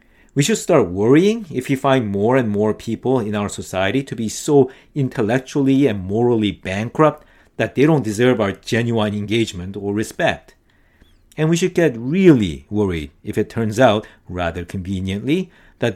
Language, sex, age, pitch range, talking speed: English, male, 50-69, 105-150 Hz, 160 wpm